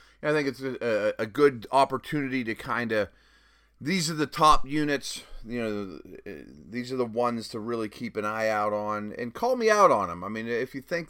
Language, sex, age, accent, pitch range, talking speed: English, male, 30-49, American, 105-140 Hz, 210 wpm